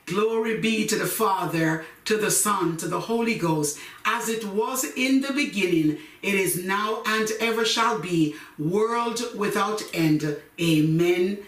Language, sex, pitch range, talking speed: English, female, 170-215 Hz, 150 wpm